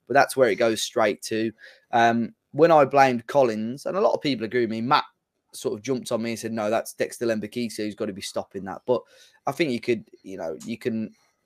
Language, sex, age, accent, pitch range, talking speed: English, male, 20-39, British, 115-135 Hz, 250 wpm